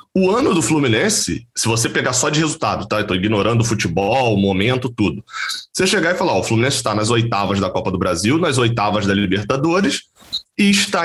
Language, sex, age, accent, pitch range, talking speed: Portuguese, male, 20-39, Brazilian, 110-170 Hz, 210 wpm